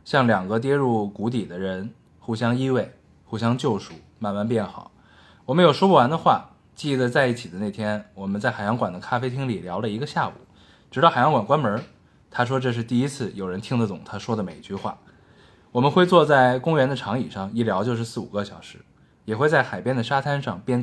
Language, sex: Chinese, male